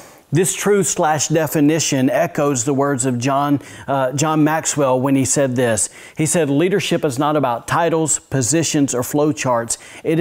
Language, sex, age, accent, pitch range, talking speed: English, male, 40-59, American, 130-160 Hz, 160 wpm